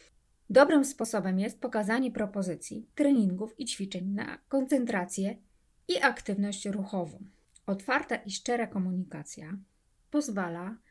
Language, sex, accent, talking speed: Polish, female, native, 100 wpm